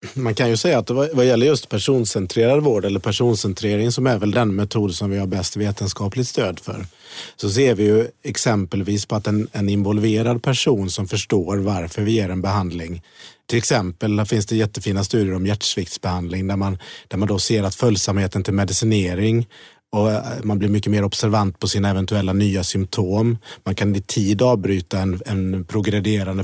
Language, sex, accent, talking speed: Swedish, male, native, 180 wpm